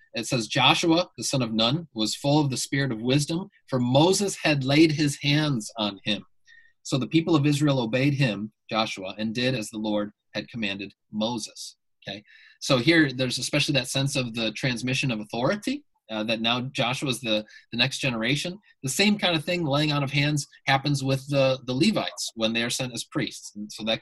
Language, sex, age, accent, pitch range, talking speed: English, male, 30-49, American, 115-145 Hz, 205 wpm